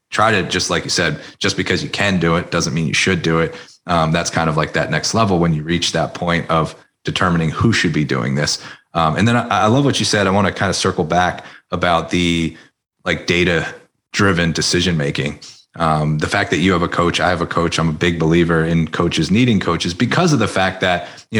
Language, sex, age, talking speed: English, male, 30-49, 245 wpm